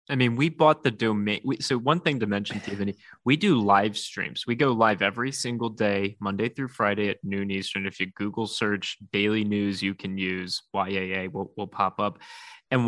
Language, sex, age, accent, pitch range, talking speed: English, male, 20-39, American, 105-130 Hz, 200 wpm